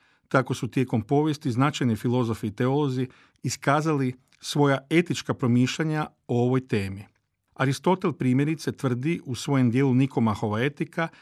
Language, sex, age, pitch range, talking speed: Croatian, male, 50-69, 115-145 Hz, 125 wpm